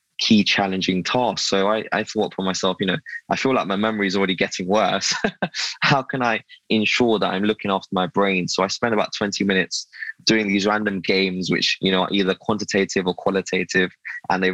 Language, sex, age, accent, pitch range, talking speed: English, male, 20-39, British, 95-105 Hz, 205 wpm